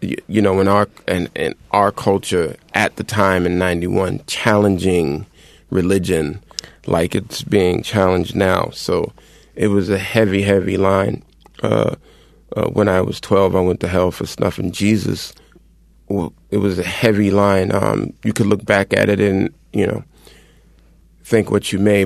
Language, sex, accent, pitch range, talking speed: English, male, American, 95-110 Hz, 165 wpm